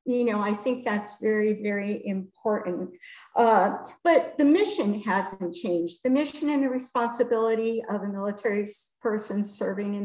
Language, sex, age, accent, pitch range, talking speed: English, female, 50-69, American, 195-235 Hz, 150 wpm